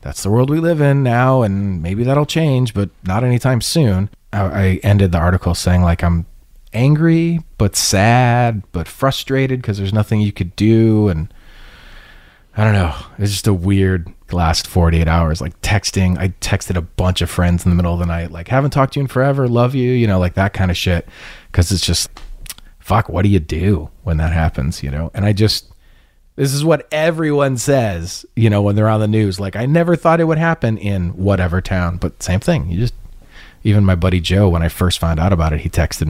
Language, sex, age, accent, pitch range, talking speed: English, male, 30-49, American, 90-125 Hz, 220 wpm